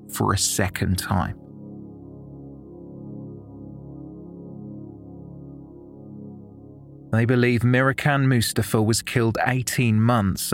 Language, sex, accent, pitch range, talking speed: English, male, British, 100-125 Hz, 70 wpm